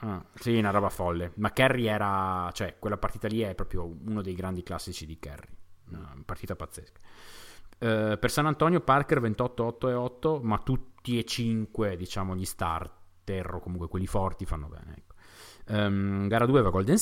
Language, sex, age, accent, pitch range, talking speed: Italian, male, 30-49, native, 95-115 Hz, 170 wpm